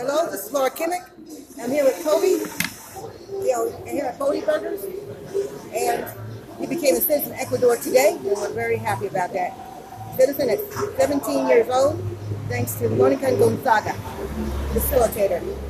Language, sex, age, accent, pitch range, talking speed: English, female, 40-59, American, 230-380 Hz, 155 wpm